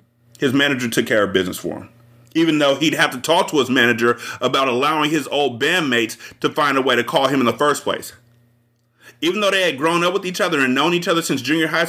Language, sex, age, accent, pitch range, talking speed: English, male, 30-49, American, 120-145 Hz, 245 wpm